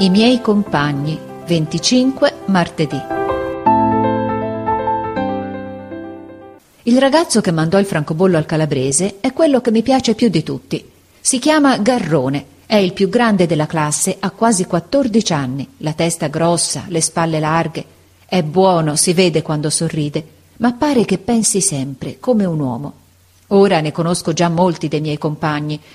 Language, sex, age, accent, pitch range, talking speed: Italian, female, 40-59, native, 150-200 Hz, 145 wpm